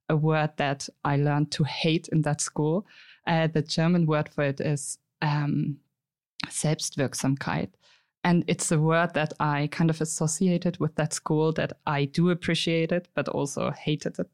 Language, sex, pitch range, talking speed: English, female, 150-175 Hz, 170 wpm